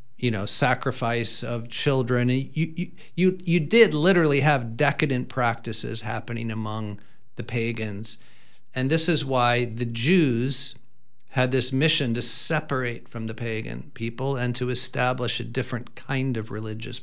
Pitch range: 115-140 Hz